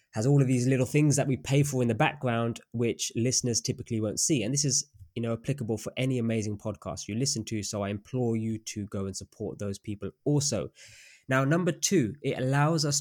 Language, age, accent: English, 20-39, British